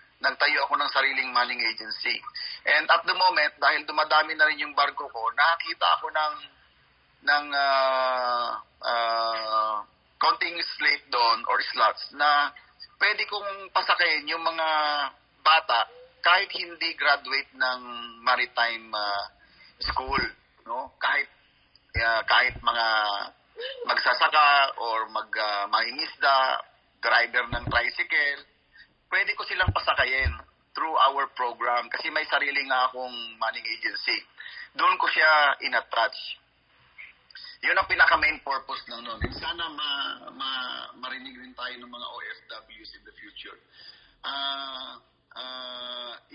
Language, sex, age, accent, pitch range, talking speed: English, male, 30-49, Filipino, 120-175 Hz, 120 wpm